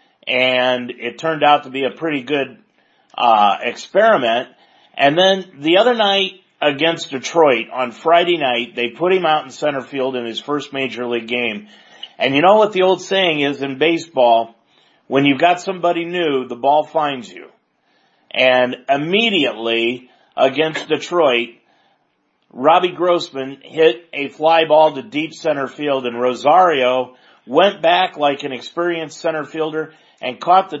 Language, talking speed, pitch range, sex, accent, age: English, 155 wpm, 130-165 Hz, male, American, 40-59